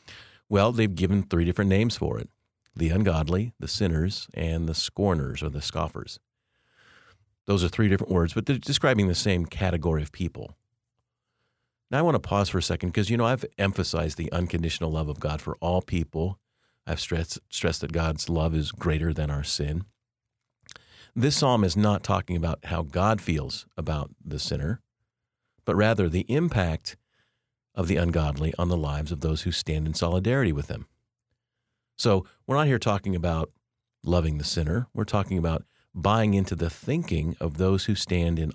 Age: 40-59